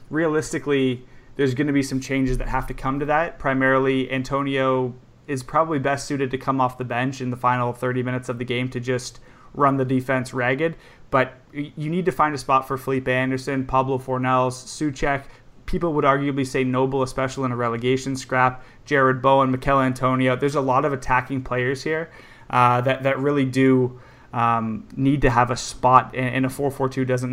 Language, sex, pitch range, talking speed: English, male, 125-135 Hz, 190 wpm